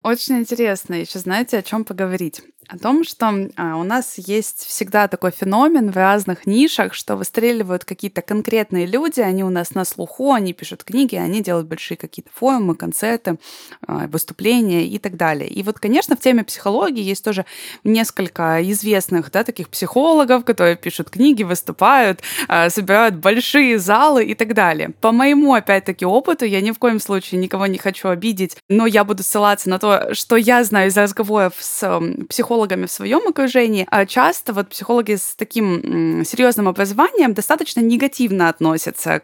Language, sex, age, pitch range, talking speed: Russian, female, 20-39, 195-250 Hz, 160 wpm